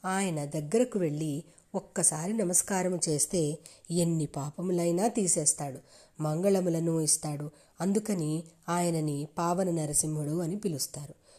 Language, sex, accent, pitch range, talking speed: Telugu, female, native, 155-195 Hz, 85 wpm